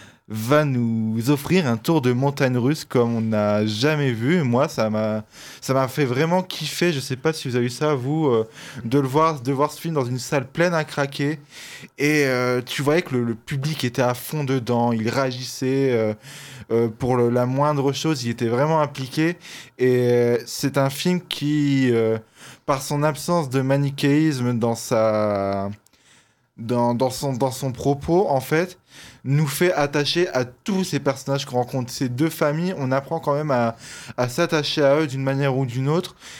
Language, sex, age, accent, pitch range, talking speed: French, male, 20-39, French, 120-150 Hz, 195 wpm